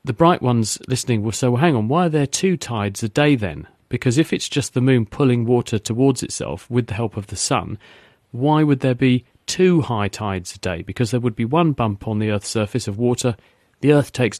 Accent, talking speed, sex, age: British, 235 wpm, male, 40-59